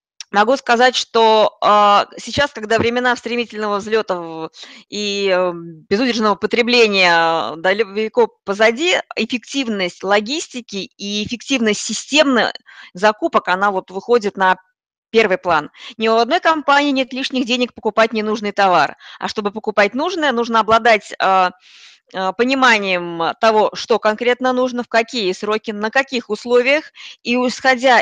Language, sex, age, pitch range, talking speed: Russian, female, 20-39, 195-240 Hz, 115 wpm